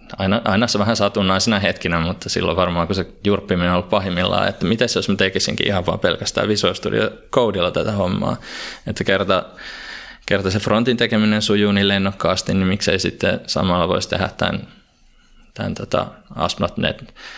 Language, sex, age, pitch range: Finnish, male, 20-39, 85-100 Hz